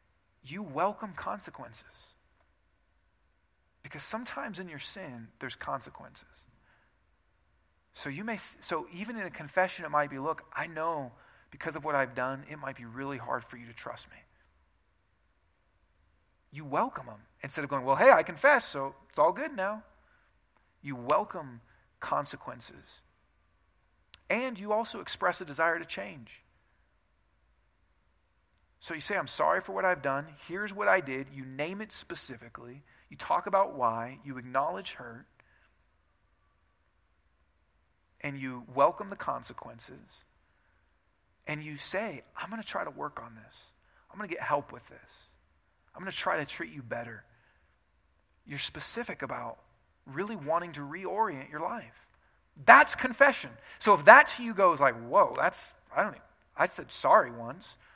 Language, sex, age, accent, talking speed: English, male, 40-59, American, 150 wpm